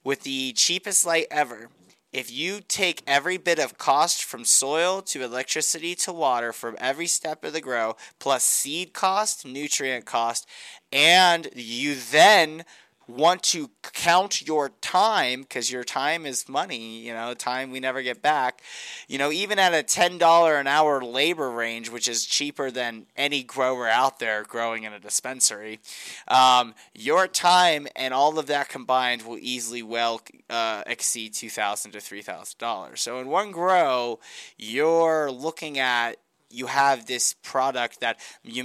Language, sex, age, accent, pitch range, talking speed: English, male, 30-49, American, 115-155 Hz, 155 wpm